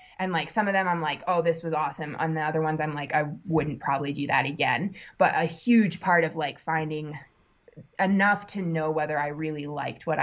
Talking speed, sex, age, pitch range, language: 225 wpm, female, 20-39, 155-180 Hz, English